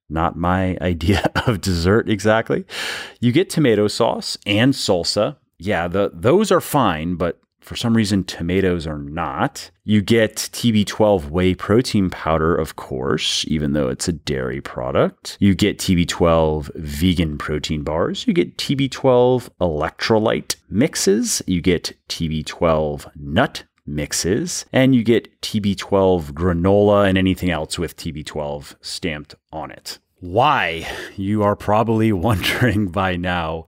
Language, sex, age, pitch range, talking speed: English, male, 30-49, 80-105 Hz, 130 wpm